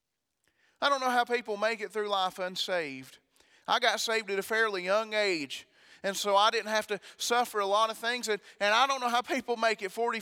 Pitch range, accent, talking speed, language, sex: 205-240 Hz, American, 225 wpm, English, male